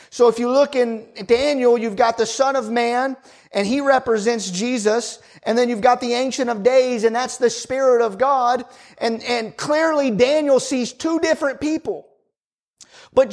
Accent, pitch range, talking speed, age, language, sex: American, 240-290 Hz, 175 wpm, 30-49, English, male